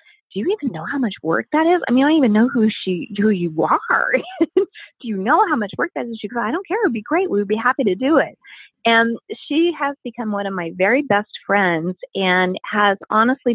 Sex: female